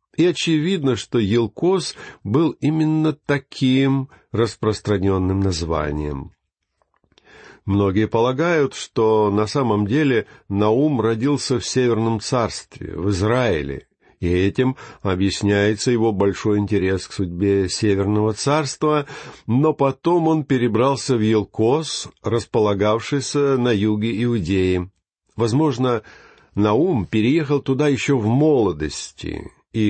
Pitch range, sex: 100-135 Hz, male